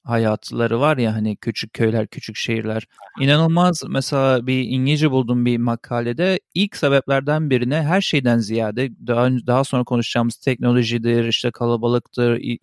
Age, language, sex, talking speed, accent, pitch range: 40-59, Turkish, male, 135 wpm, native, 120-155 Hz